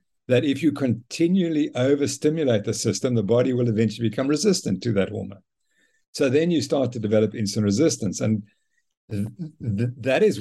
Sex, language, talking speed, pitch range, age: male, English, 155 wpm, 110-135 Hz, 60-79